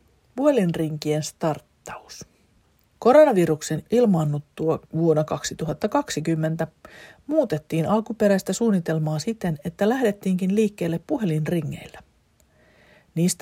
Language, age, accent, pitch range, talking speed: Finnish, 40-59, native, 155-210 Hz, 65 wpm